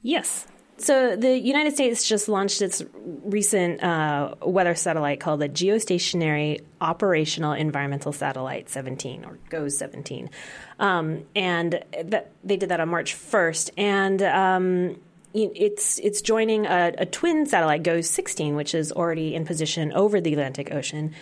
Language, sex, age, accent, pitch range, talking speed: English, female, 30-49, American, 150-190 Hz, 140 wpm